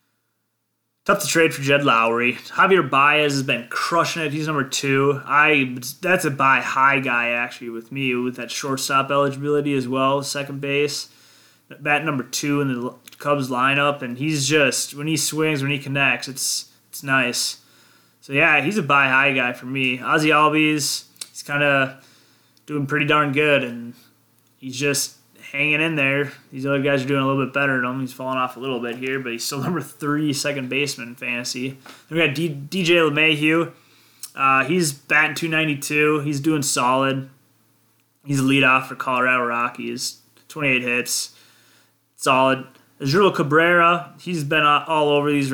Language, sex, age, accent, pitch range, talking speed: English, male, 20-39, American, 130-150 Hz, 170 wpm